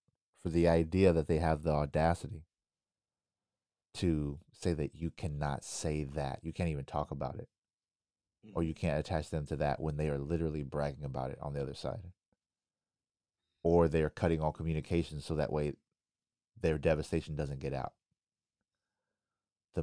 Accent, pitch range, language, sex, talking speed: American, 70-85 Hz, English, male, 165 wpm